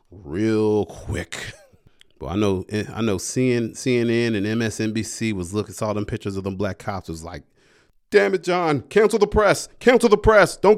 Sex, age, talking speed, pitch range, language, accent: male, 30-49, 180 wpm, 95-140 Hz, English, American